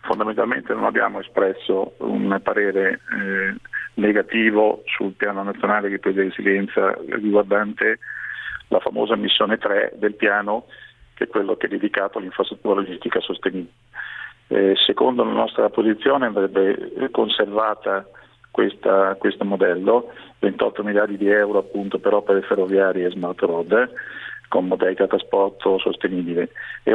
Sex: male